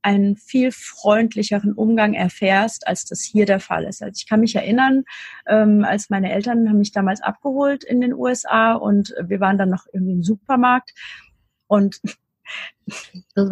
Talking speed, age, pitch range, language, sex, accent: 160 wpm, 30-49, 195-230 Hz, German, female, German